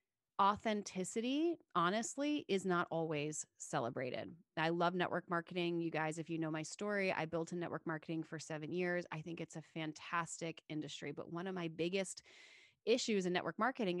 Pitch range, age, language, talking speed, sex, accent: 160-185 Hz, 30-49, English, 170 wpm, female, American